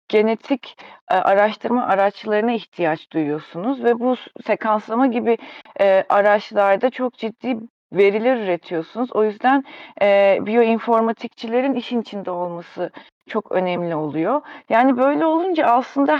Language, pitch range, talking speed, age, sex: Turkish, 215-275 Hz, 110 wpm, 40-59, female